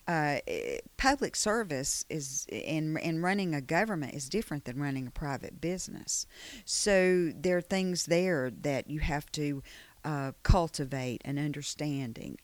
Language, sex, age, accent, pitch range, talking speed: English, female, 50-69, American, 140-175 Hz, 140 wpm